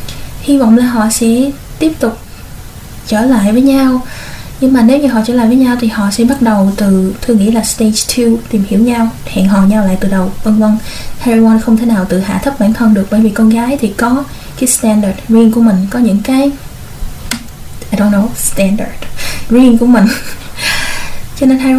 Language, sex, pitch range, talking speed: Vietnamese, female, 215-245 Hz, 210 wpm